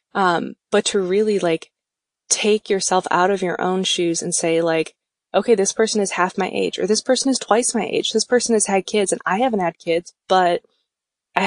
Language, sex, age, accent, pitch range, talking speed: English, female, 20-39, American, 170-200 Hz, 215 wpm